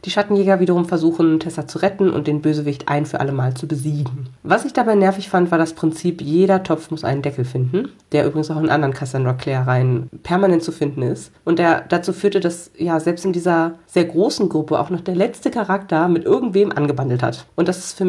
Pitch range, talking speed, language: 150-185 Hz, 220 wpm, German